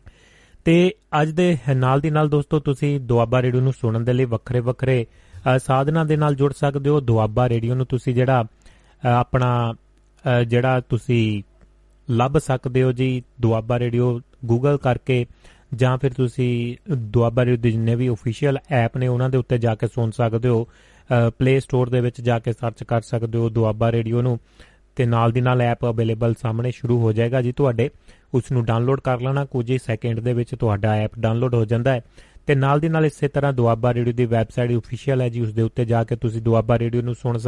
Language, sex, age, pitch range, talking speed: Punjabi, male, 30-49, 115-130 Hz, 120 wpm